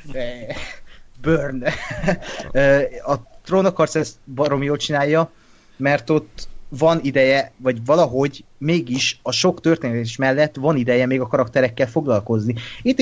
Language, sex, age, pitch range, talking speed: Hungarian, male, 30-49, 115-145 Hz, 115 wpm